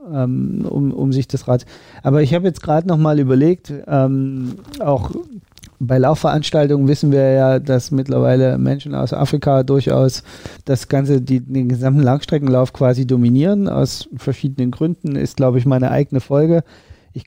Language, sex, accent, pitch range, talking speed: German, male, German, 130-155 Hz, 150 wpm